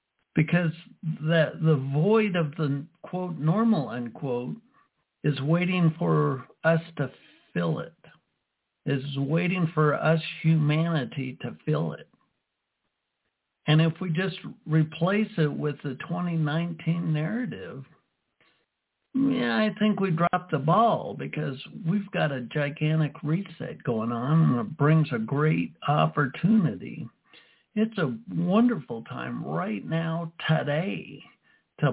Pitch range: 150-180 Hz